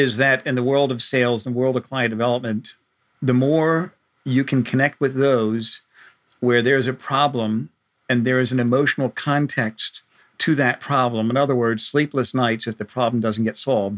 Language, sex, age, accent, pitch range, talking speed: English, male, 50-69, American, 120-145 Hz, 195 wpm